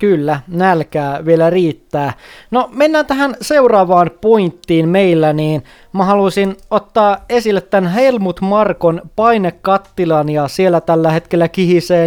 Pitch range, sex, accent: 155-195 Hz, male, native